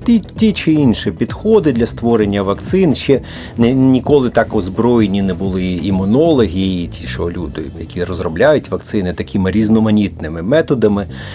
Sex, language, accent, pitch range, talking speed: male, Ukrainian, native, 95-125 Hz, 130 wpm